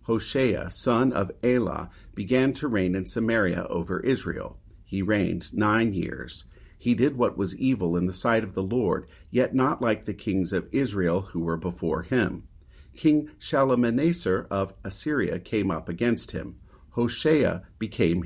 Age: 50-69